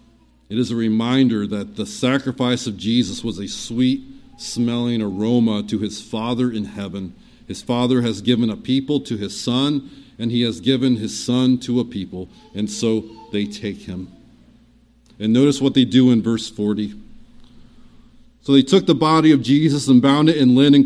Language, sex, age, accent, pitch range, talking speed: English, male, 40-59, American, 105-135 Hz, 180 wpm